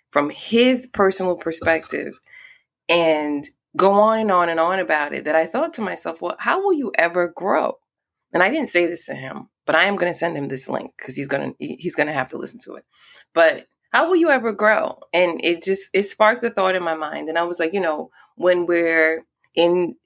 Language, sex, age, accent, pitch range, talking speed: English, female, 20-39, American, 155-205 Hz, 230 wpm